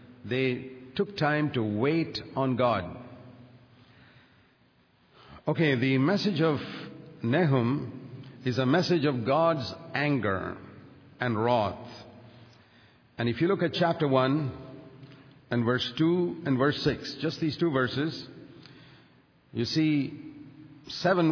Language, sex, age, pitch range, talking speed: English, male, 50-69, 125-155 Hz, 115 wpm